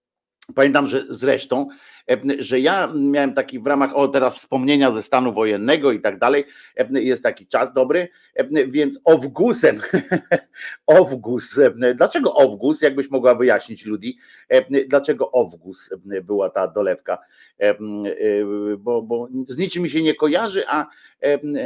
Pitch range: 125-170 Hz